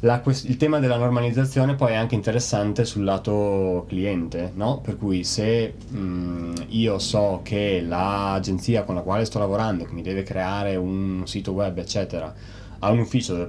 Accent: native